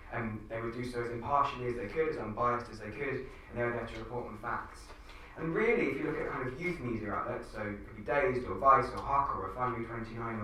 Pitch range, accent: 105-125 Hz, British